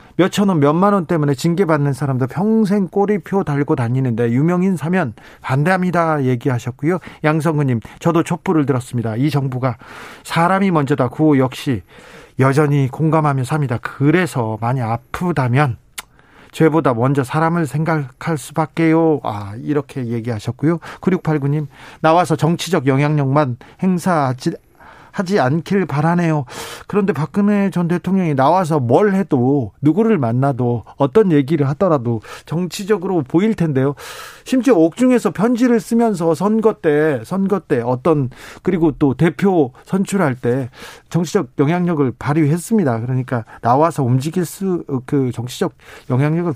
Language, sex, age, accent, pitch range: Korean, male, 40-59, native, 135-180 Hz